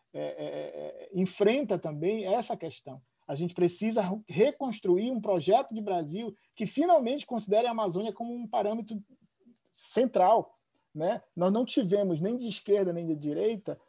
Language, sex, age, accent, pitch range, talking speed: Portuguese, male, 50-69, Brazilian, 170-215 Hz, 145 wpm